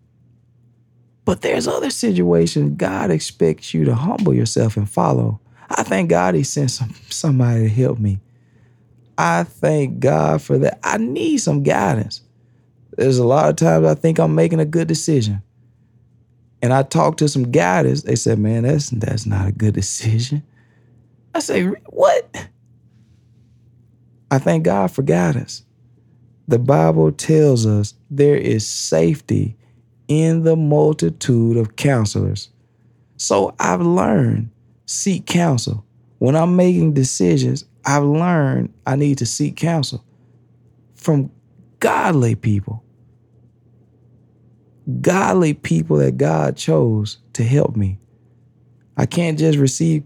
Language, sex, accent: English, male, American